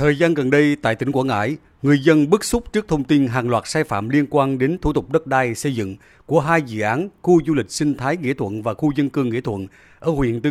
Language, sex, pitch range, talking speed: Vietnamese, male, 125-165 Hz, 275 wpm